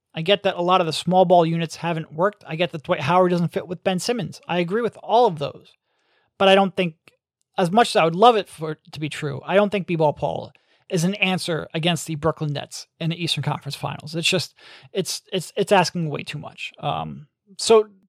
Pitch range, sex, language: 155-195 Hz, male, English